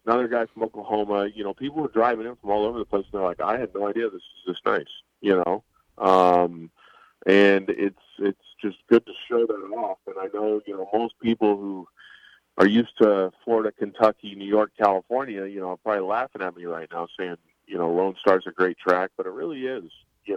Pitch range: 95-120 Hz